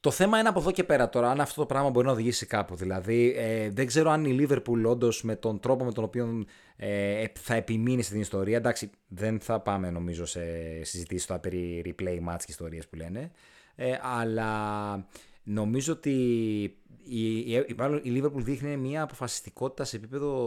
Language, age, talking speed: Greek, 30-49, 195 wpm